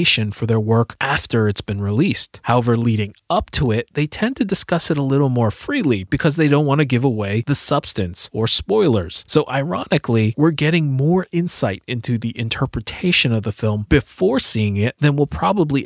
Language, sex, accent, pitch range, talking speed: English, male, American, 110-140 Hz, 190 wpm